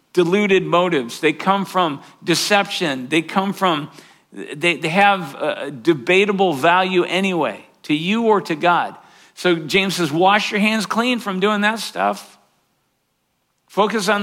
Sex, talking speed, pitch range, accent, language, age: male, 140 wpm, 155-200 Hz, American, English, 50-69